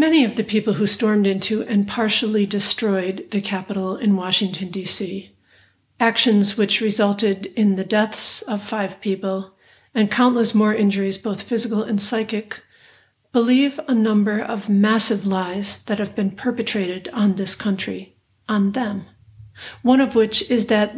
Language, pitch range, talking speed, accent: English, 195-225 Hz, 150 wpm, American